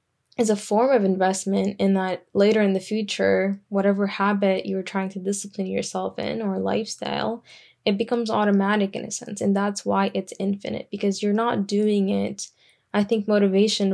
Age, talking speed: 10-29, 170 wpm